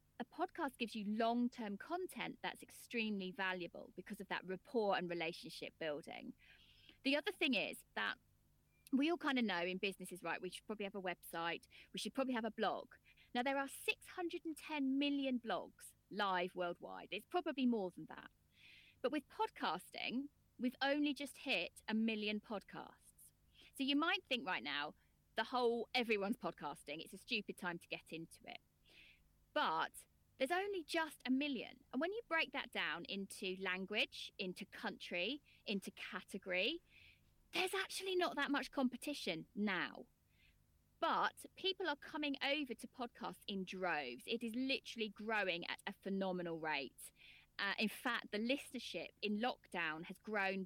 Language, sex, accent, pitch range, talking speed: English, female, British, 185-275 Hz, 160 wpm